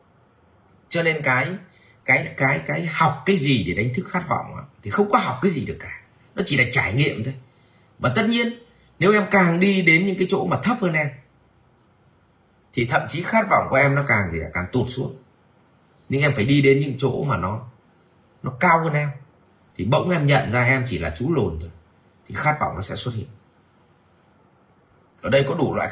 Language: Vietnamese